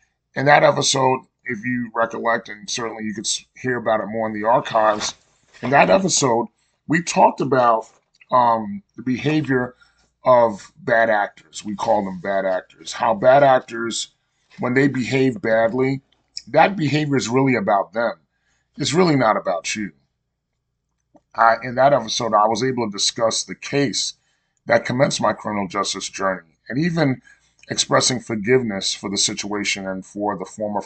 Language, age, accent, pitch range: English, 30-49, American, 105-130 Hz